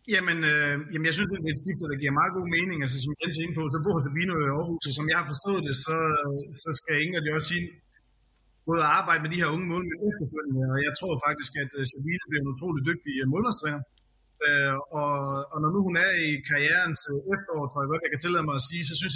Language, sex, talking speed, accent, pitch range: Danish, male, 245 wpm, native, 140-170 Hz